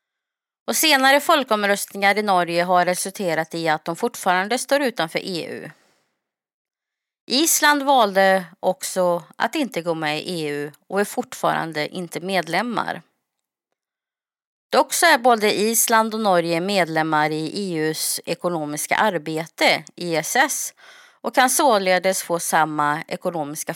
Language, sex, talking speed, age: Swedish, female, 120 wpm, 30-49